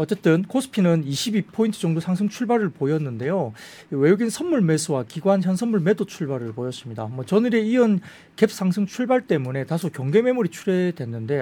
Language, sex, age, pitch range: Korean, male, 40-59, 135-205 Hz